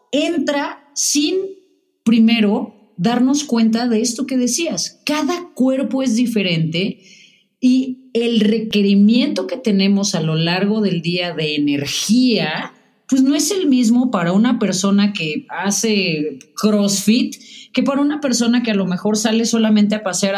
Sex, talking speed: female, 140 wpm